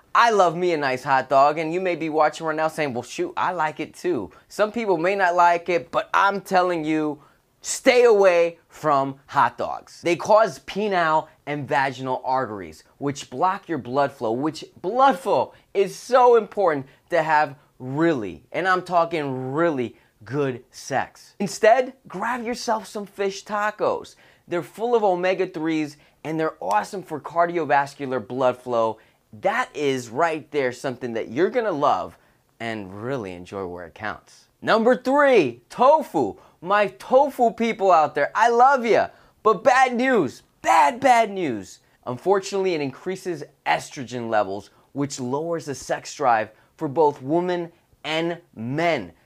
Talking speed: 155 wpm